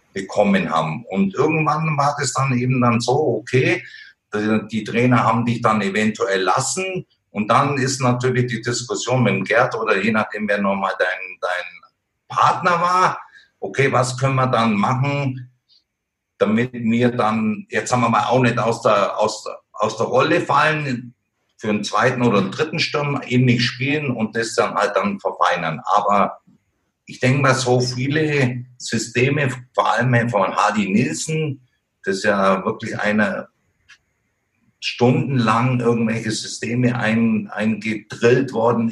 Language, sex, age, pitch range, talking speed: German, male, 60-79, 105-125 Hz, 145 wpm